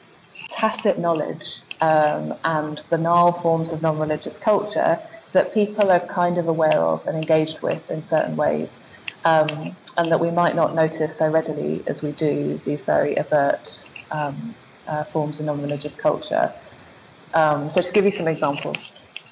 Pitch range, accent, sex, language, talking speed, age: 150-175 Hz, British, female, English, 155 wpm, 20-39